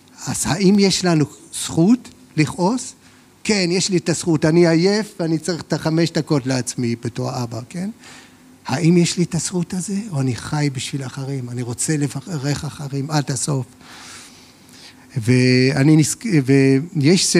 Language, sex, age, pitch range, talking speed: Hebrew, male, 50-69, 135-190 Hz, 140 wpm